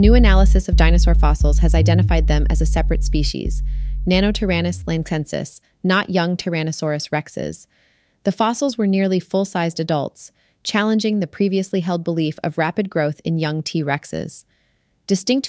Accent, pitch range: American, 150-185 Hz